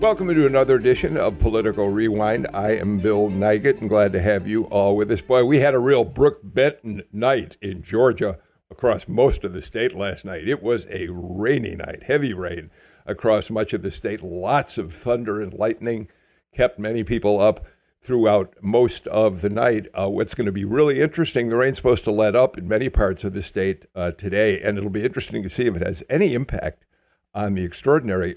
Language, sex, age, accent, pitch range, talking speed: English, male, 60-79, American, 105-135 Hz, 205 wpm